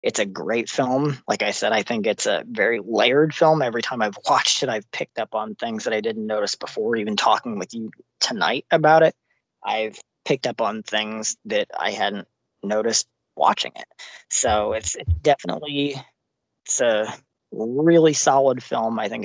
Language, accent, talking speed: English, American, 180 wpm